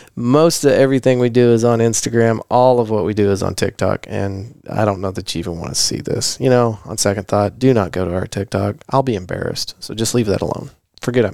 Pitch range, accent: 110-135 Hz, American